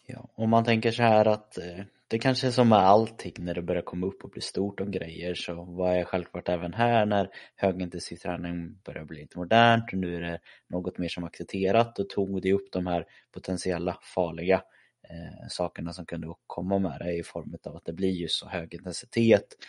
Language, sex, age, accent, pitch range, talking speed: Swedish, male, 20-39, native, 85-100 Hz, 205 wpm